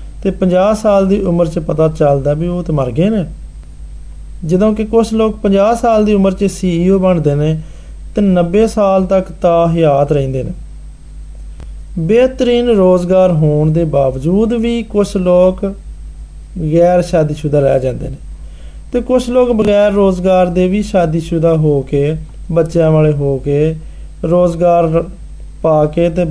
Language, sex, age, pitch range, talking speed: Hindi, male, 30-49, 140-190 Hz, 110 wpm